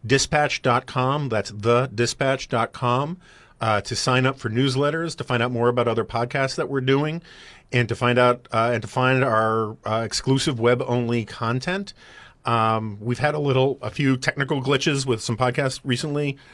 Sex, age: male, 40-59